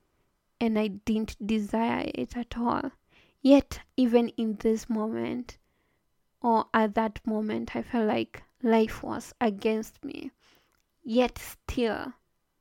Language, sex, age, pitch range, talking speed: English, female, 20-39, 220-255 Hz, 120 wpm